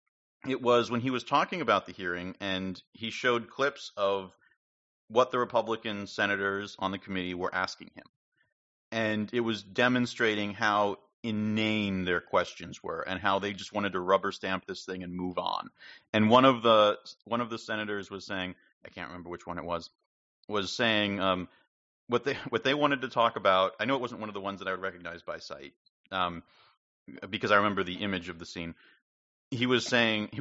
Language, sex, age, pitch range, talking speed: English, male, 40-59, 95-120 Hz, 200 wpm